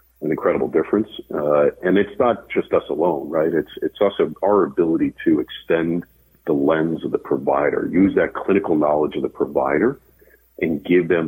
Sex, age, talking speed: male, 50-69, 175 wpm